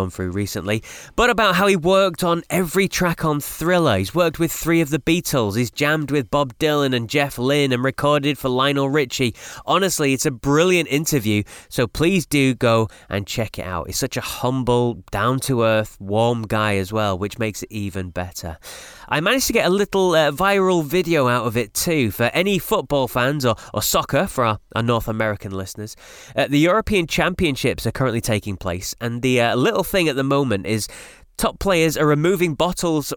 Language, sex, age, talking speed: English, male, 20-39, 195 wpm